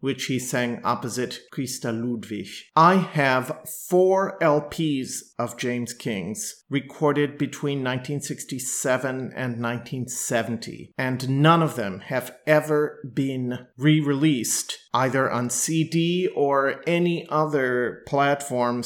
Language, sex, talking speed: English, male, 105 wpm